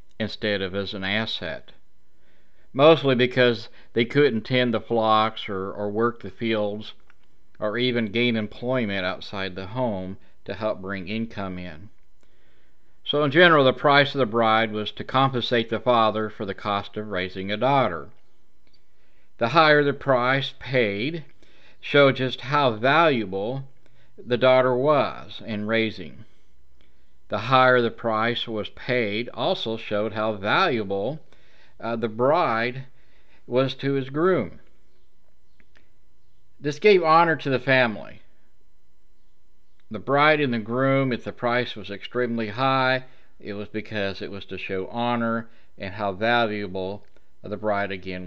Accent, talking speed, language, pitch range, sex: American, 140 wpm, English, 100-130 Hz, male